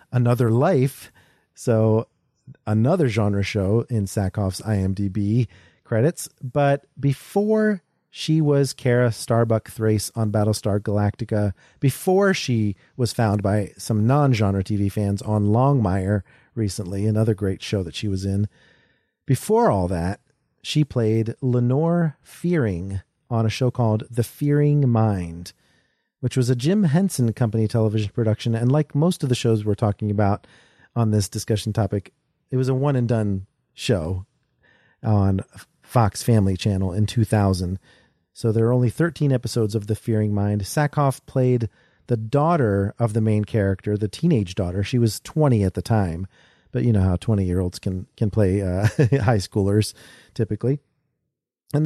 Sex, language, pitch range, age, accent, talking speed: male, English, 105-135 Hz, 40-59, American, 150 wpm